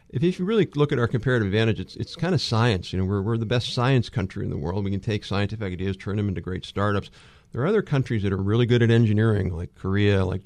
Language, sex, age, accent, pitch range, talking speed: English, male, 50-69, American, 95-120 Hz, 270 wpm